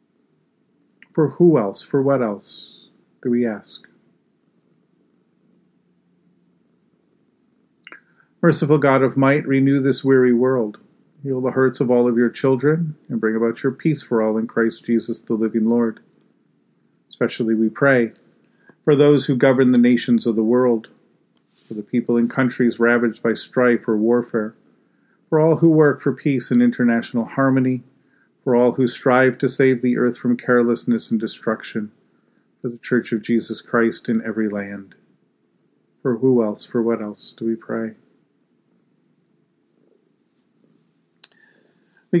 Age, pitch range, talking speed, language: 40-59, 115-140 Hz, 140 wpm, English